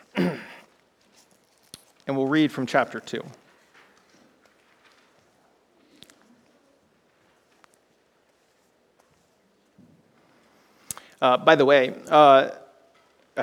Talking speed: 45 wpm